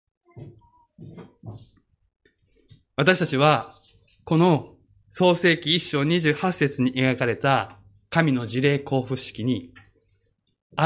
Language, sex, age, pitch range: Japanese, male, 20-39, 125-190 Hz